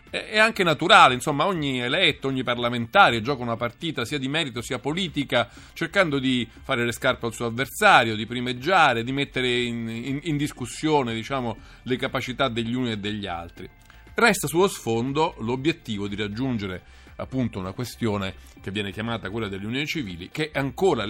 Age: 40-59